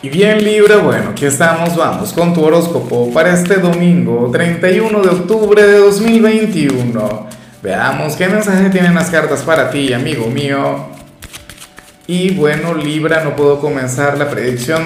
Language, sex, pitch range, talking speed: Spanish, male, 130-180 Hz, 145 wpm